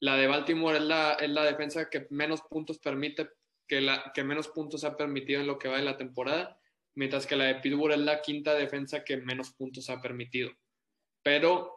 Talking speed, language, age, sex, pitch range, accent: 210 wpm, Spanish, 20-39, male, 140-165 Hz, Mexican